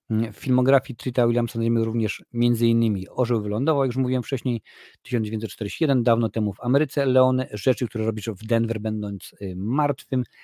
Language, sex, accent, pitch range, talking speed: Polish, male, native, 110-130 Hz, 150 wpm